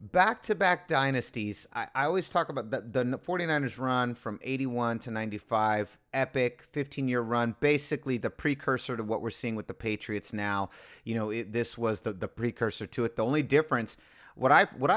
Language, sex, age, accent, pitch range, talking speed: English, male, 30-49, American, 115-150 Hz, 180 wpm